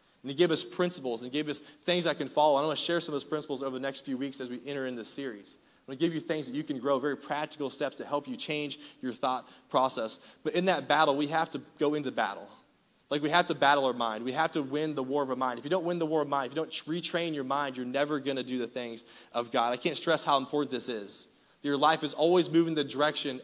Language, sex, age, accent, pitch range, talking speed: English, male, 30-49, American, 145-170 Hz, 285 wpm